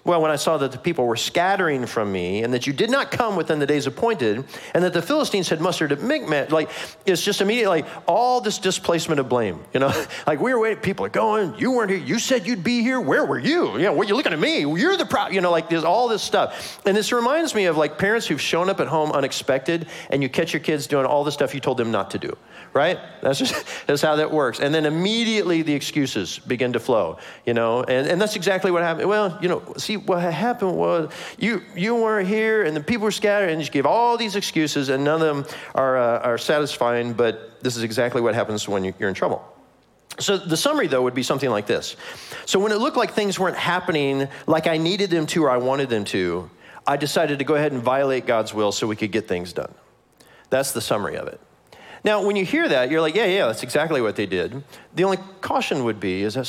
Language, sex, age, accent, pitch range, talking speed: English, male, 40-59, American, 130-200 Hz, 255 wpm